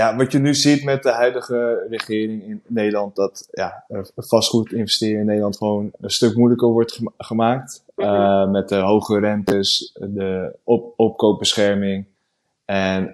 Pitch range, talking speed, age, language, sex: 100-115 Hz, 145 wpm, 20-39, Dutch, male